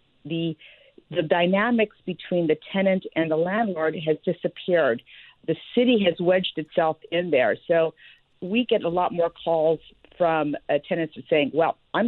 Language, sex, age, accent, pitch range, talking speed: English, female, 50-69, American, 155-190 Hz, 150 wpm